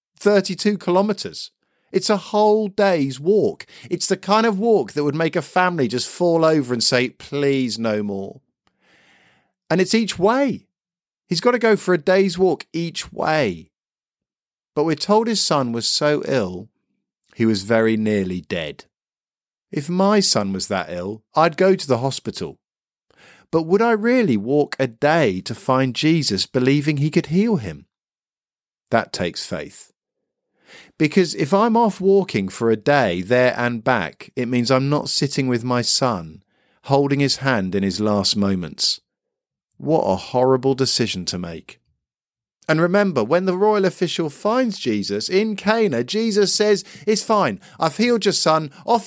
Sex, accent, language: male, British, English